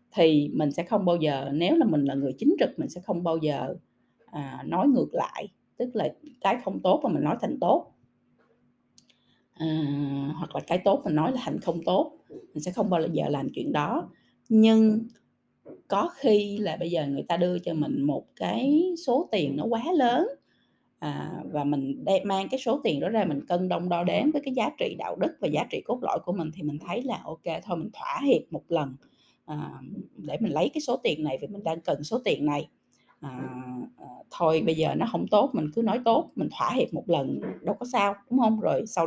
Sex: female